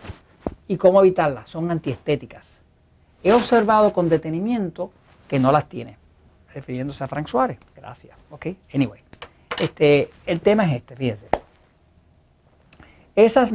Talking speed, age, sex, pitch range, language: 120 wpm, 50-69, male, 130-175 Hz, English